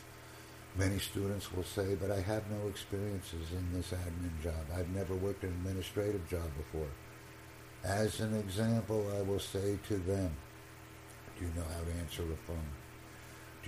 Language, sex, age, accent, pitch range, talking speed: English, male, 60-79, American, 85-105 Hz, 160 wpm